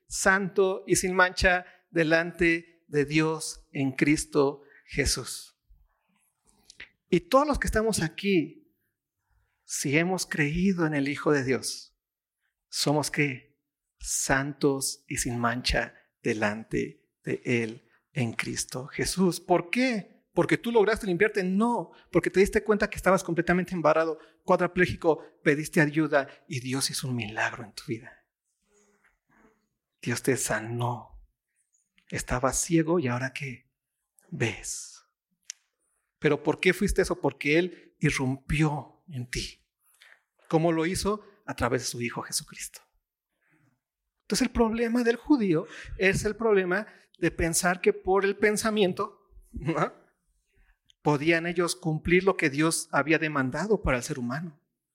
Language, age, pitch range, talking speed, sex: Spanish, 40-59, 145-195 Hz, 130 wpm, male